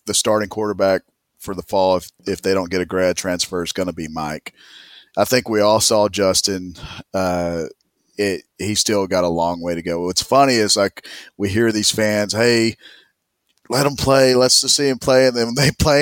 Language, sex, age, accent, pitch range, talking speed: English, male, 40-59, American, 95-115 Hz, 215 wpm